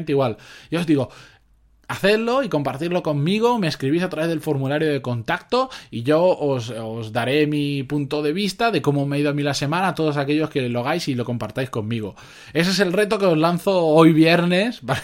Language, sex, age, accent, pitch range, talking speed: Spanish, male, 20-39, Spanish, 130-175 Hz, 210 wpm